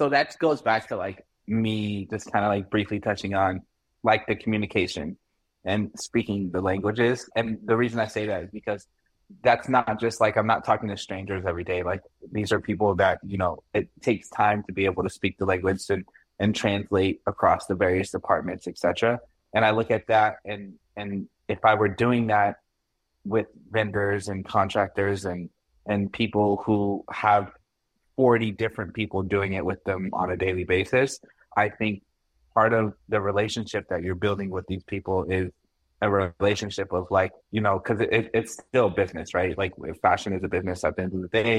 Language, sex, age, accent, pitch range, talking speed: English, male, 20-39, American, 95-110 Hz, 190 wpm